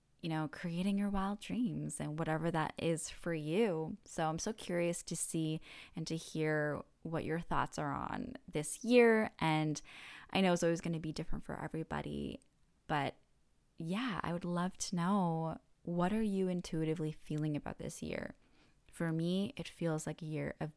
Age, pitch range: 20-39, 150-180 Hz